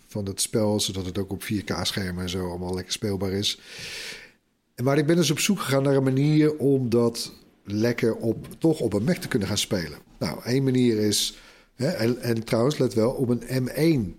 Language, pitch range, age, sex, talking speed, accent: Dutch, 105-135 Hz, 50-69, male, 205 wpm, Dutch